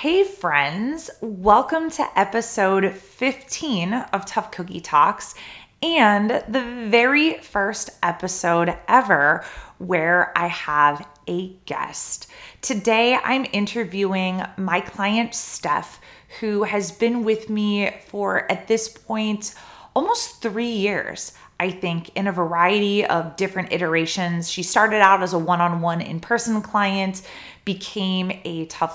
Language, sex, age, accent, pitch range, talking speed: English, female, 20-39, American, 170-220 Hz, 120 wpm